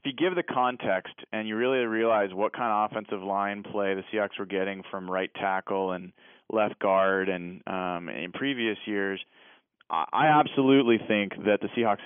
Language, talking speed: English, 180 wpm